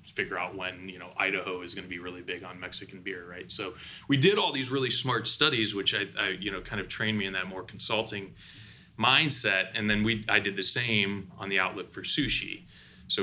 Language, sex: English, male